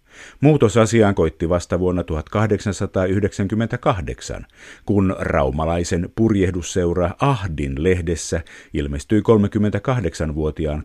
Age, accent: 50-69, native